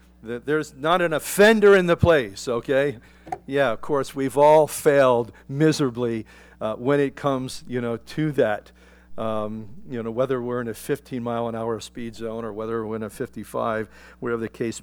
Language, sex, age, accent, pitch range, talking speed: English, male, 50-69, American, 120-170 Hz, 170 wpm